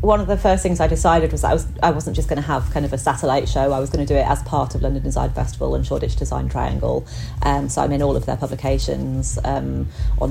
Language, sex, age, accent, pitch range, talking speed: English, female, 30-49, British, 105-150 Hz, 280 wpm